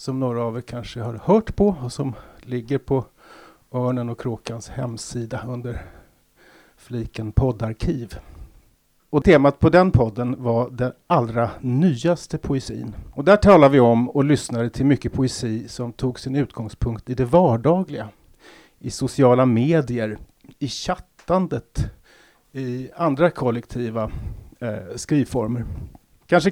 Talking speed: 130 wpm